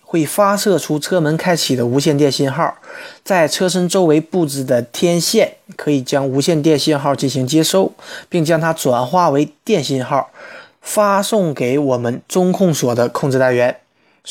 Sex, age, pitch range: male, 20-39, 140-185 Hz